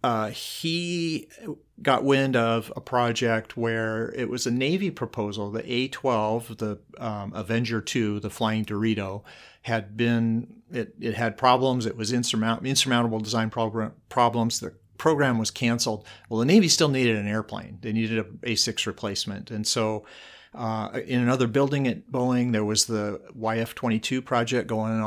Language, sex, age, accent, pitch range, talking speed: English, male, 40-59, American, 105-120 Hz, 155 wpm